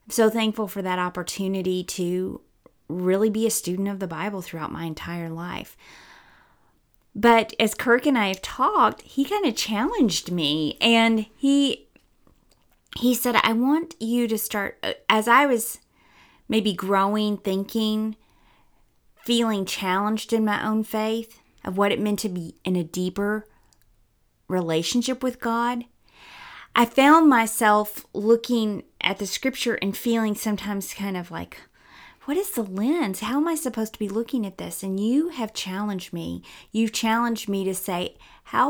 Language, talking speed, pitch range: English, 155 wpm, 185-235 Hz